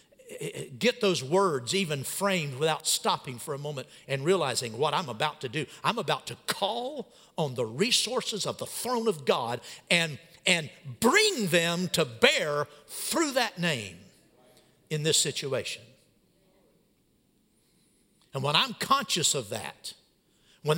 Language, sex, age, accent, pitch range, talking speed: English, male, 50-69, American, 155-220 Hz, 140 wpm